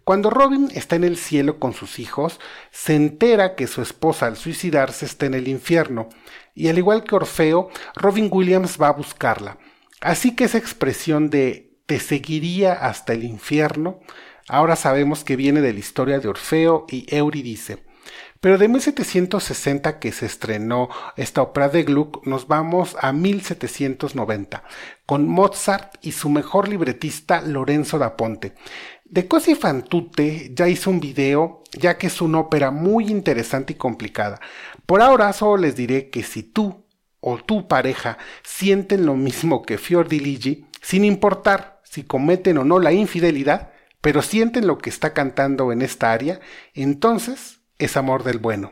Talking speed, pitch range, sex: 160 wpm, 135-185 Hz, male